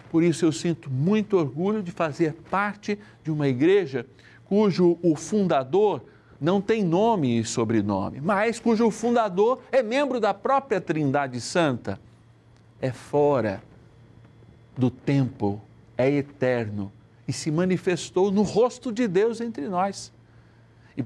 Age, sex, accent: 60-79, male, Brazilian